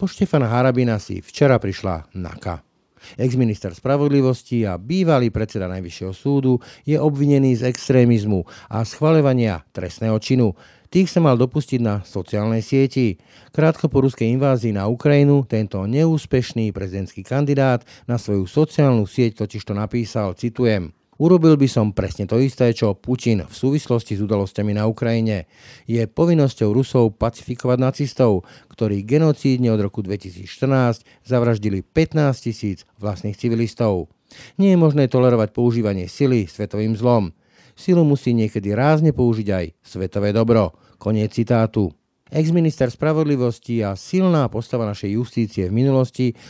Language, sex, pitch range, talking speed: Slovak, male, 105-135 Hz, 135 wpm